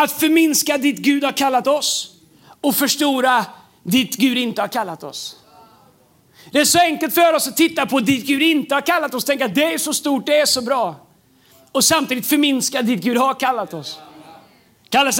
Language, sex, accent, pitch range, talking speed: Swedish, male, native, 215-280 Hz, 195 wpm